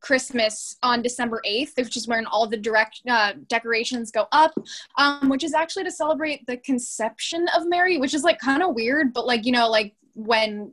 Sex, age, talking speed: female, 10-29, 200 wpm